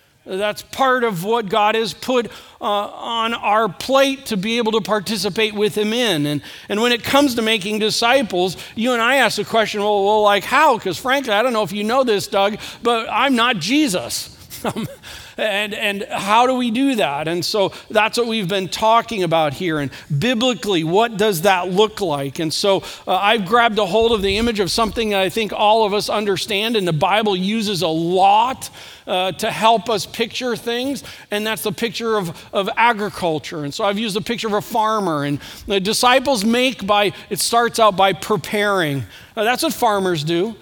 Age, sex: 50-69, male